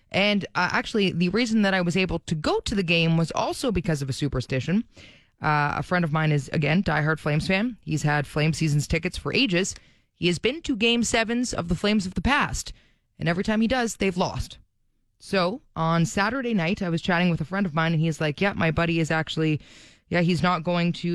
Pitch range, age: 160-235 Hz, 20-39